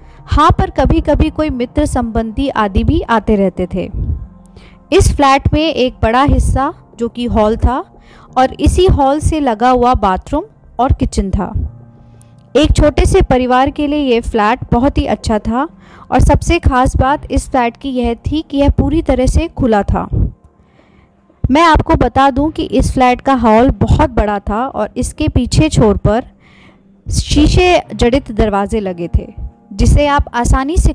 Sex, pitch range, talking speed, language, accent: female, 220-275 Hz, 140 wpm, English, Indian